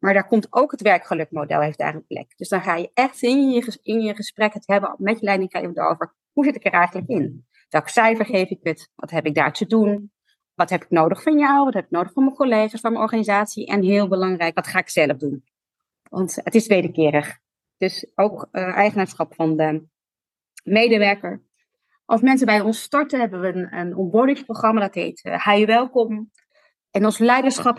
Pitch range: 185-235 Hz